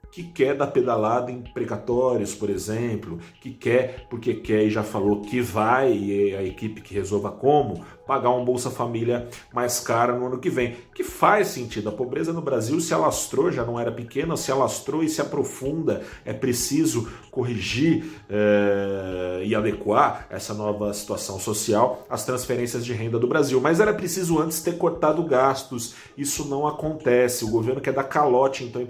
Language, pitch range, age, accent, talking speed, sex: Portuguese, 105-130 Hz, 40-59, Brazilian, 175 wpm, male